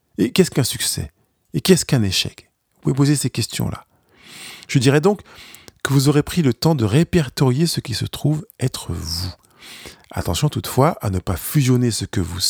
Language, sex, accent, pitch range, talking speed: French, male, French, 100-140 Hz, 185 wpm